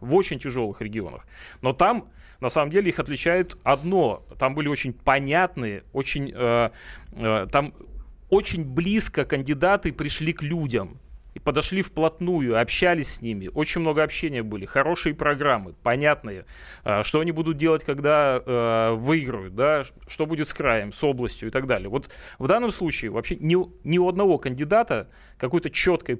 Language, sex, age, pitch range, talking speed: Russian, male, 30-49, 125-165 Hz, 160 wpm